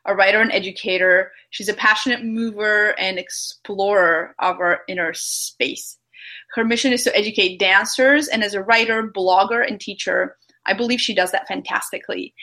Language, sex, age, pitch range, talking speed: English, female, 20-39, 190-230 Hz, 160 wpm